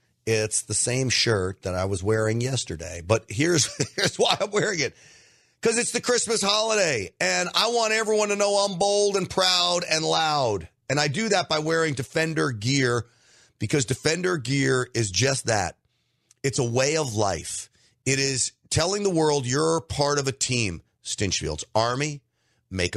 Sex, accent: male, American